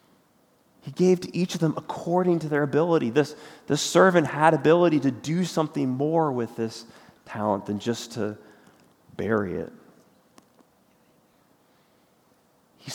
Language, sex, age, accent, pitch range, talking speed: English, male, 30-49, American, 115-160 Hz, 130 wpm